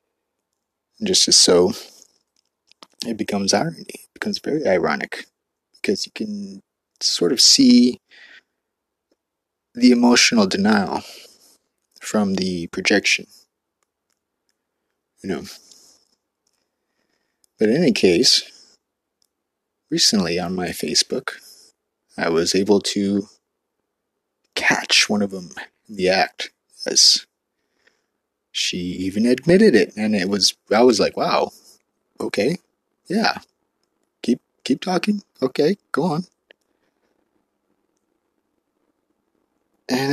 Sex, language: male, English